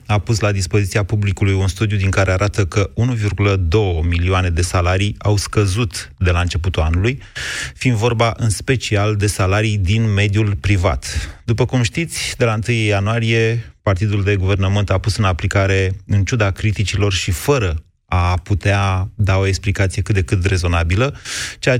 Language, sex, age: Romanian, male, 30-49